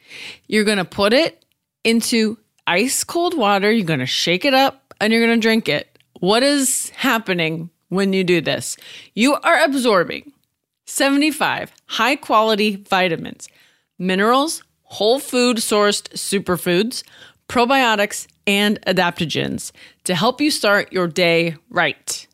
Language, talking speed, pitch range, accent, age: English, 125 wpm, 180-245 Hz, American, 30-49